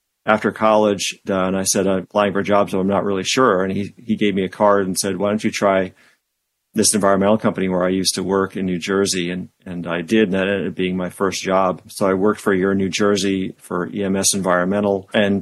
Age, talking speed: 40-59, 255 wpm